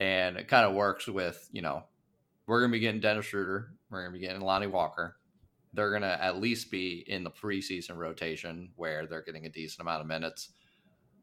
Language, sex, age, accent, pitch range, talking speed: English, male, 20-39, American, 90-115 Hz, 215 wpm